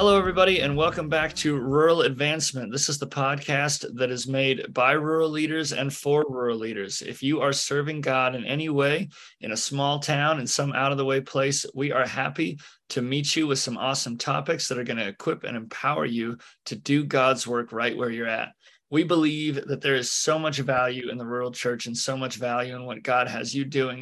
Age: 30-49